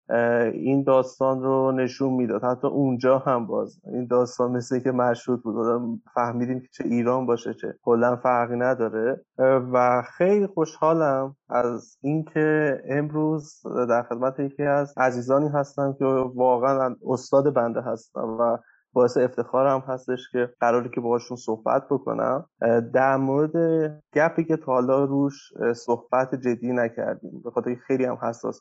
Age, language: 20-39, Persian